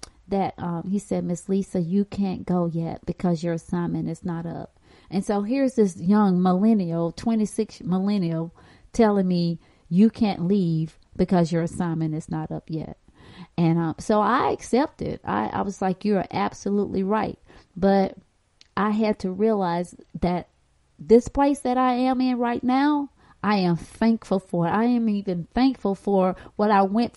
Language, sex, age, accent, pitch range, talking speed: English, female, 30-49, American, 175-230 Hz, 165 wpm